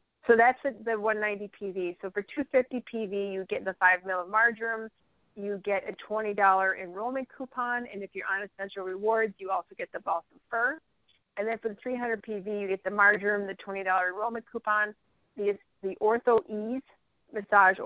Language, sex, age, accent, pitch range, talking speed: English, female, 30-49, American, 195-240 Hz, 180 wpm